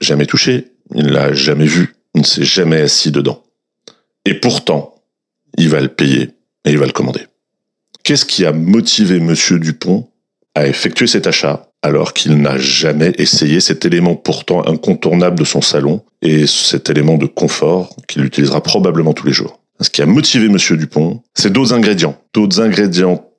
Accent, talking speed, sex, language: French, 175 wpm, male, French